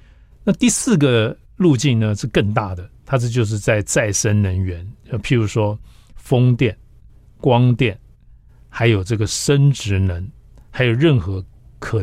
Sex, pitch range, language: male, 100-120 Hz, Chinese